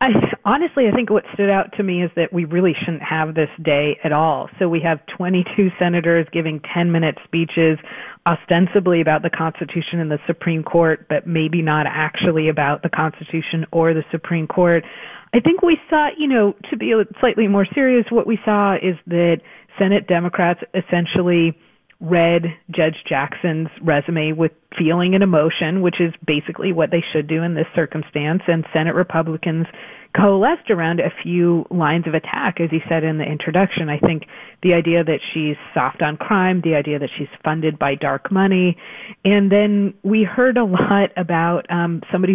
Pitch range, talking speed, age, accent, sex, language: 160-190 Hz, 175 wpm, 40-59, American, female, English